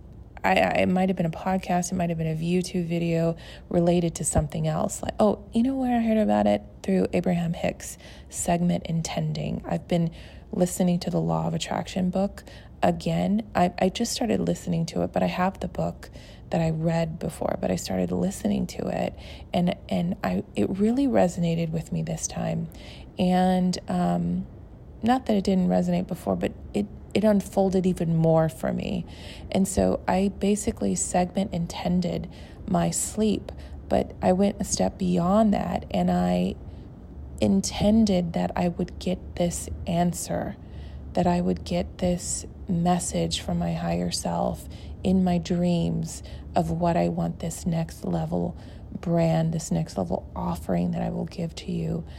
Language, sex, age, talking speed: English, female, 30-49, 170 wpm